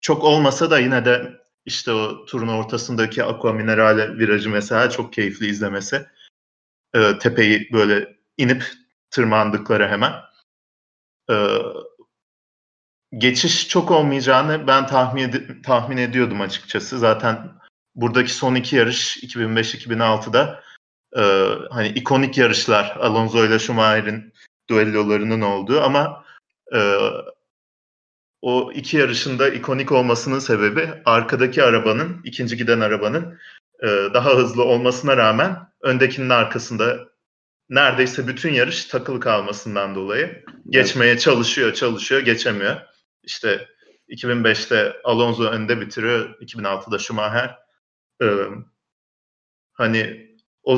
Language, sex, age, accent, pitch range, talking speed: Turkish, male, 40-59, native, 110-135 Hz, 100 wpm